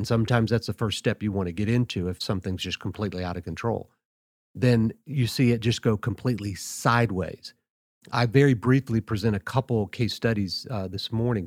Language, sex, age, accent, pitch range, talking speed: English, male, 40-59, American, 100-120 Hz, 195 wpm